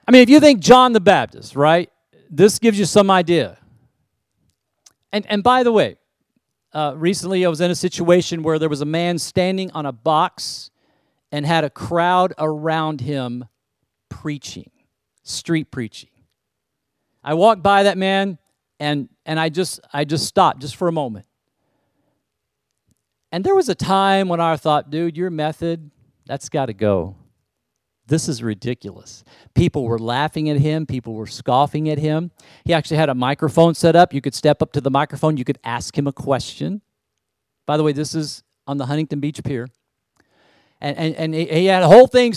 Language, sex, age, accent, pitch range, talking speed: English, male, 40-59, American, 140-175 Hz, 180 wpm